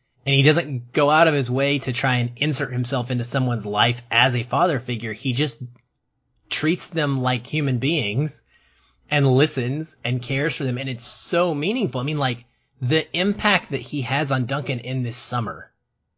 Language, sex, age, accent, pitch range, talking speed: English, male, 30-49, American, 120-150 Hz, 185 wpm